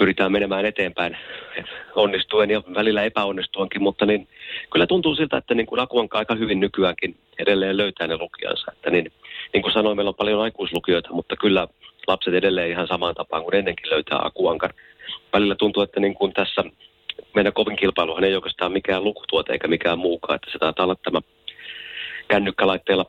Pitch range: 90-105 Hz